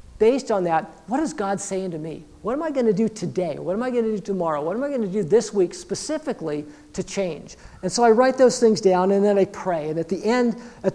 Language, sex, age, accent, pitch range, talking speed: English, male, 50-69, American, 170-215 Hz, 275 wpm